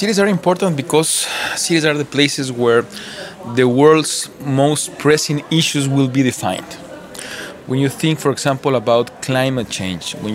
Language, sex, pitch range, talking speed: English, male, 120-155 Hz, 150 wpm